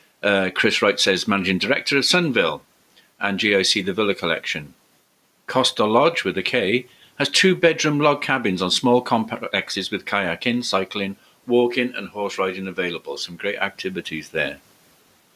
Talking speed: 145 wpm